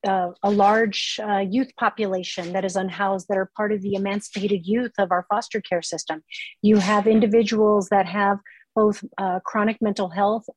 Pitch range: 195-235 Hz